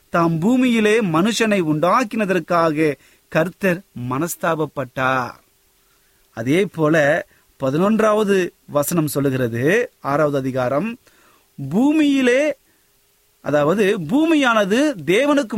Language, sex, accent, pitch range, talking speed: Tamil, male, native, 145-215 Hz, 55 wpm